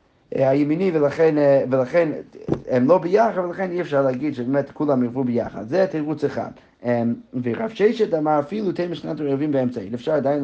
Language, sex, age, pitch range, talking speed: Hebrew, male, 30-49, 120-155 Hz, 155 wpm